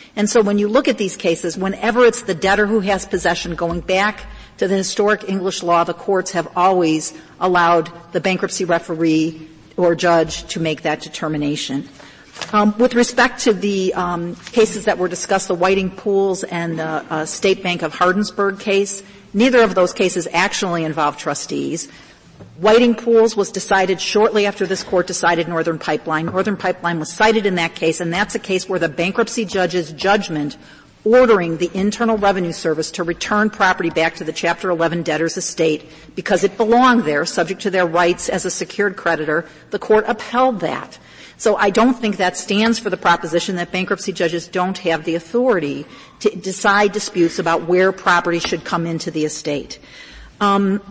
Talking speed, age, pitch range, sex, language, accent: 175 wpm, 50-69, 170-205 Hz, female, English, American